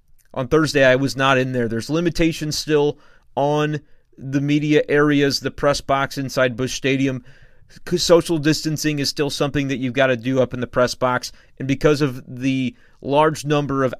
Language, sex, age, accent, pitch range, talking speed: English, male, 30-49, American, 125-150 Hz, 180 wpm